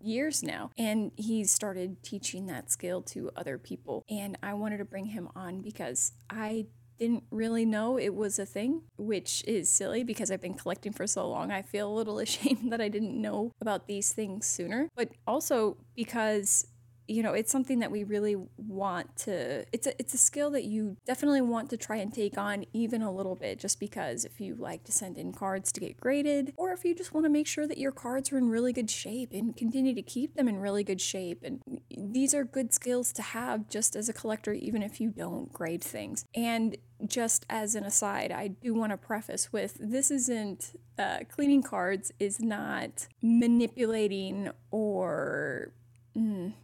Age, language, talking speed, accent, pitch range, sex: 20-39, English, 200 wpm, American, 200-240 Hz, female